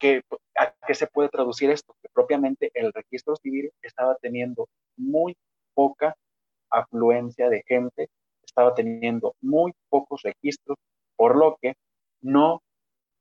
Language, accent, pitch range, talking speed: Spanish, Mexican, 130-200 Hz, 125 wpm